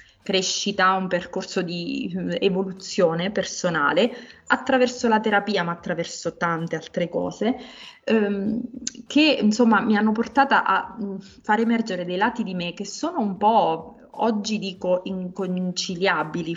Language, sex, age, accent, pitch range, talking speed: Italian, female, 20-39, native, 185-225 Hz, 125 wpm